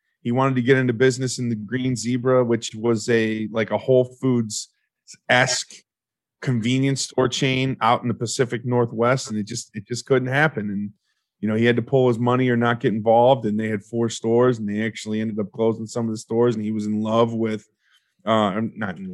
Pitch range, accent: 110-130 Hz, American